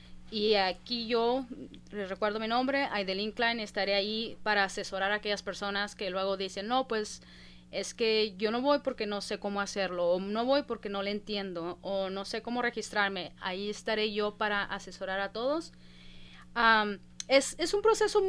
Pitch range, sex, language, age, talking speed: 195-245 Hz, female, English, 30-49, 180 wpm